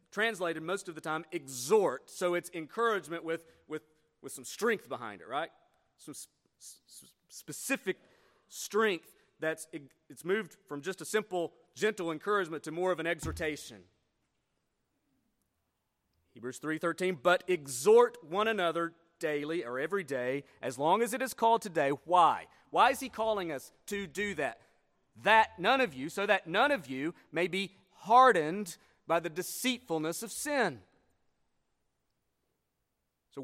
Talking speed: 145 wpm